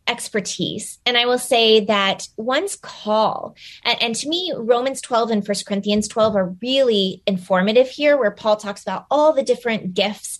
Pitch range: 185-240 Hz